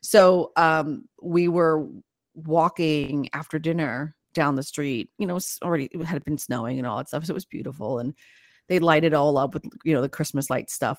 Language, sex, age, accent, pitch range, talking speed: English, female, 30-49, American, 150-190 Hz, 220 wpm